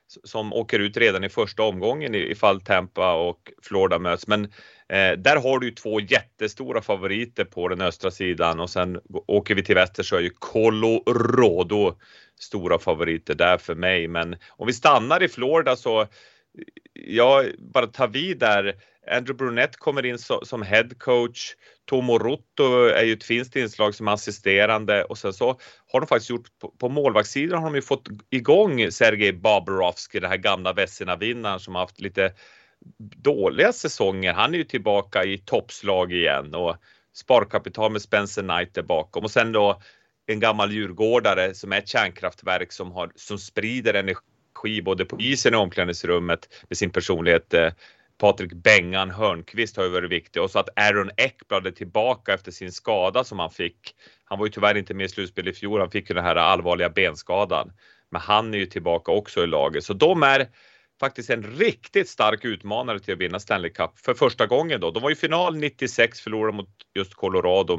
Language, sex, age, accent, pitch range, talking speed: English, male, 30-49, Swedish, 95-130 Hz, 180 wpm